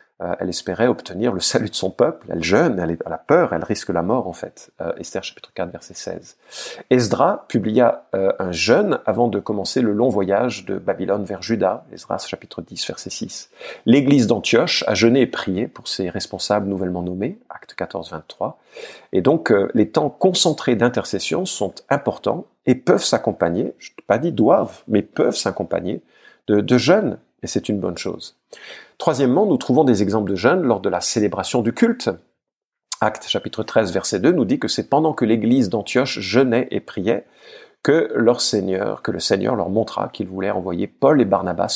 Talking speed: 185 wpm